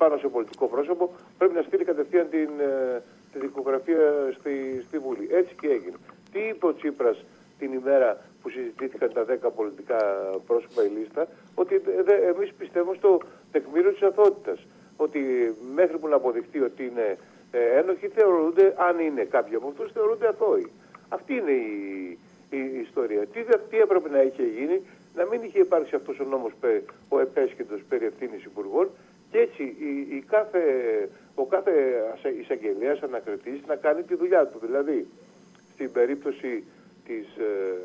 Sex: male